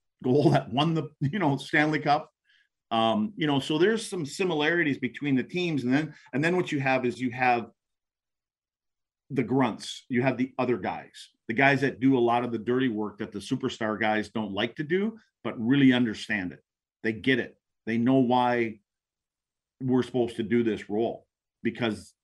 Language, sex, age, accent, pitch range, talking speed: English, male, 40-59, American, 110-140 Hz, 190 wpm